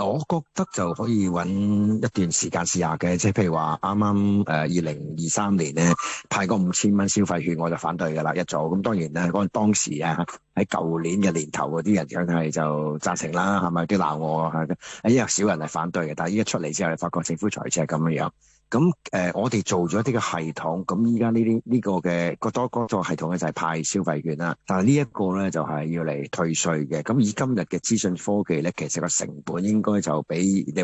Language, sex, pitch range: Chinese, male, 80-100 Hz